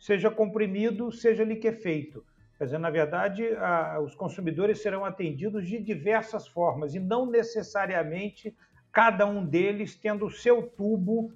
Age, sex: 50-69, male